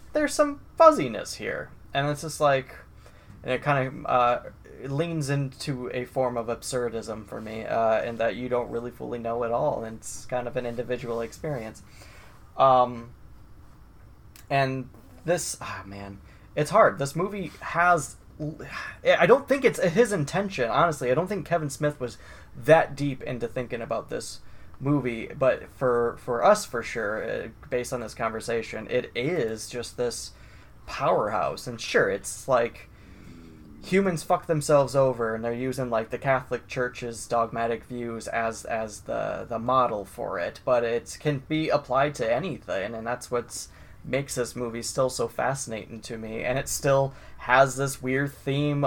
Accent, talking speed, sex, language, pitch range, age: American, 165 wpm, male, English, 115-140 Hz, 20-39